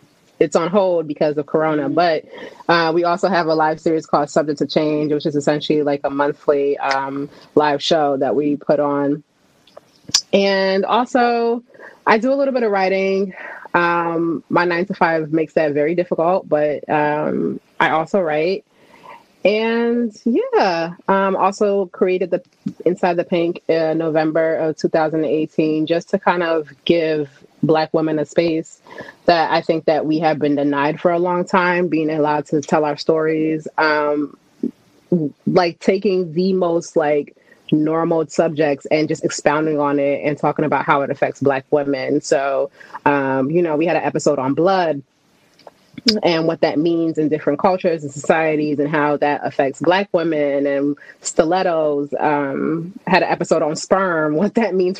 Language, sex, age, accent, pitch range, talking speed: English, female, 20-39, American, 150-175 Hz, 170 wpm